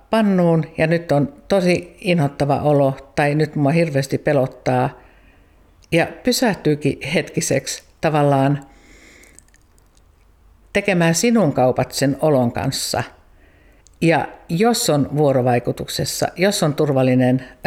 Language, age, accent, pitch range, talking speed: Finnish, 50-69, native, 130-165 Hz, 100 wpm